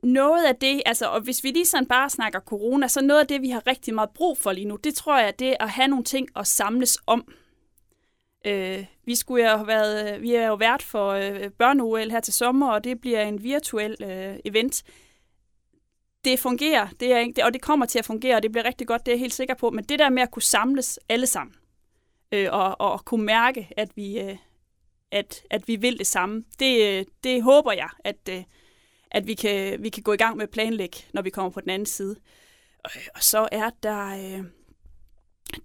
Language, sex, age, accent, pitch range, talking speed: Danish, female, 30-49, native, 215-265 Hz, 225 wpm